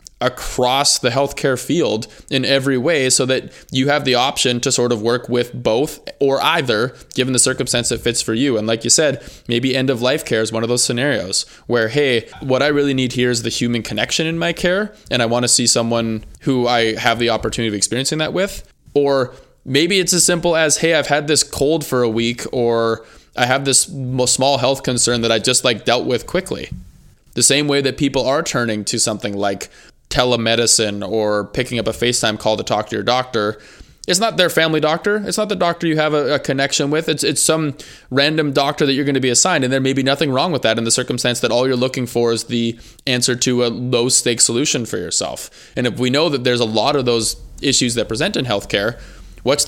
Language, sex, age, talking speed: English, male, 20-39, 230 wpm